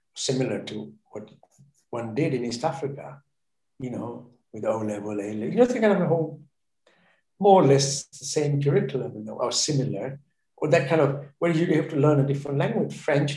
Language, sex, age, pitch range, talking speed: English, male, 60-79, 120-155 Hz, 205 wpm